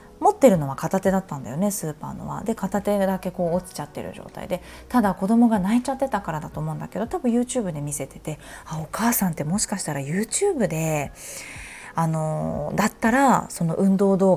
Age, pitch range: 20-39, 160-230 Hz